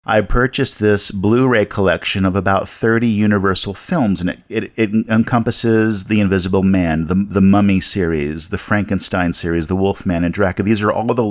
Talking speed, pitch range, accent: 175 wpm, 95-120 Hz, American